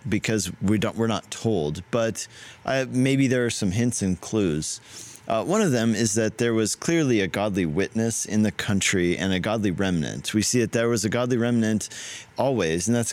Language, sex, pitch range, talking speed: English, male, 95-120 Hz, 200 wpm